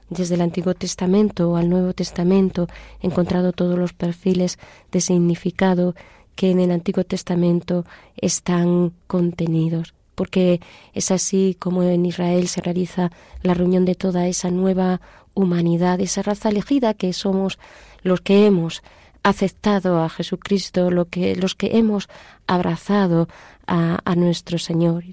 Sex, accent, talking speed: female, Spanish, 130 wpm